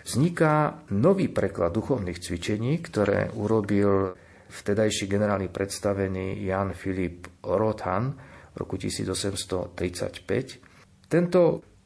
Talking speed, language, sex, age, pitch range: 85 wpm, Slovak, male, 50-69, 95-110 Hz